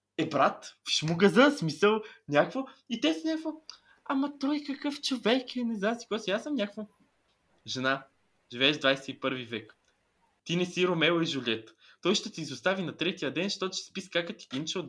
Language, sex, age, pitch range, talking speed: Bulgarian, male, 20-39, 150-215 Hz, 195 wpm